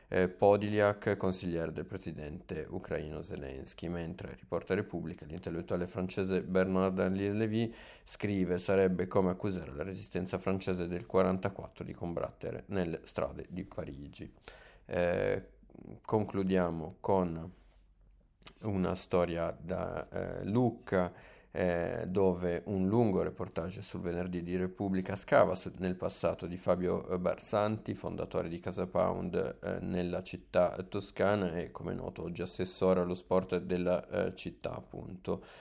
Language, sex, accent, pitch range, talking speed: Italian, male, native, 90-95 Hz, 120 wpm